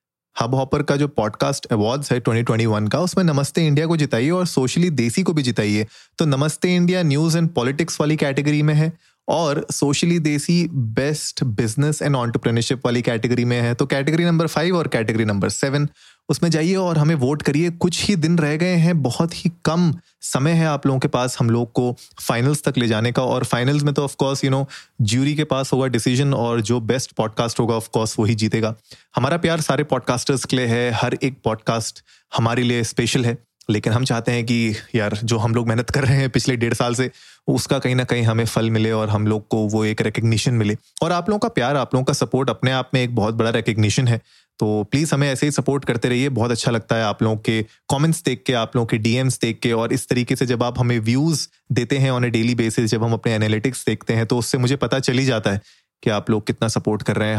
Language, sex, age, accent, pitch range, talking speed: Hindi, male, 30-49, native, 115-145 Hz, 230 wpm